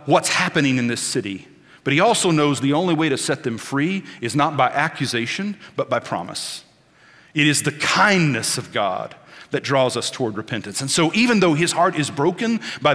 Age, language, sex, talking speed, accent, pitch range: 40-59, English, male, 200 wpm, American, 130-165 Hz